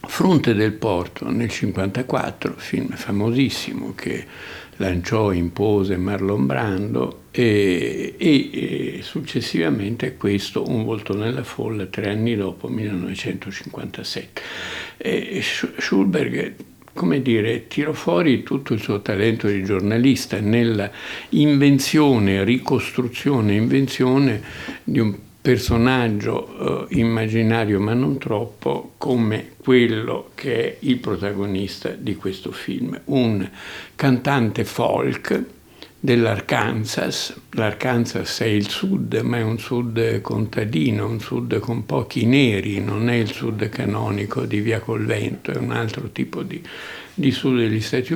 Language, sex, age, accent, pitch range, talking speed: Italian, male, 60-79, native, 100-125 Hz, 115 wpm